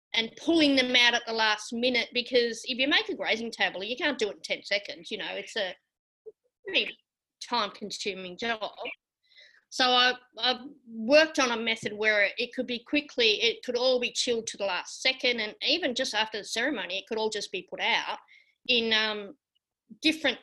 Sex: female